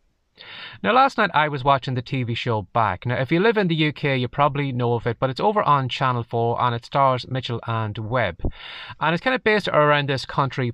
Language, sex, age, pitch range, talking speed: English, male, 20-39, 115-150 Hz, 235 wpm